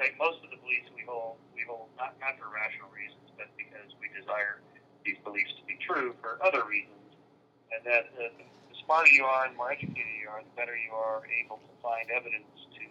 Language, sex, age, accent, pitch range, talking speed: English, male, 30-49, American, 110-140 Hz, 225 wpm